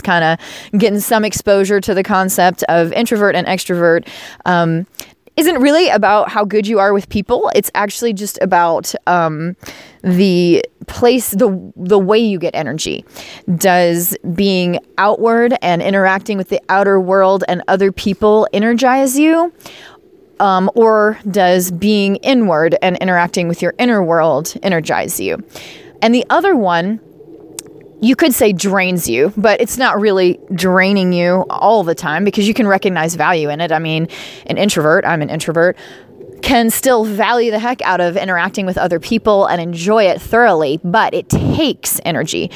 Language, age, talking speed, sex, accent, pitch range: English, 20-39, 160 wpm, female, American, 175-220 Hz